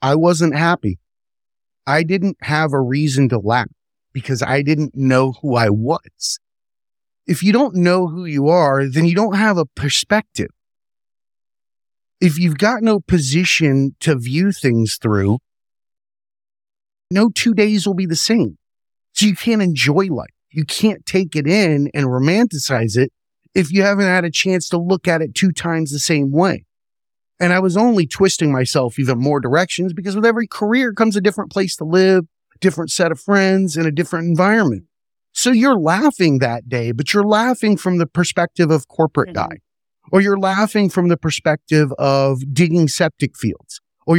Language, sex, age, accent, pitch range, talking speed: English, male, 30-49, American, 140-190 Hz, 170 wpm